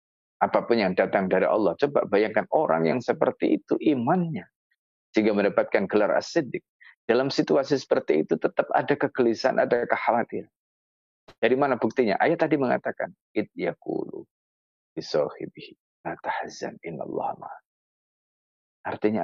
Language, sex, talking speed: Indonesian, male, 100 wpm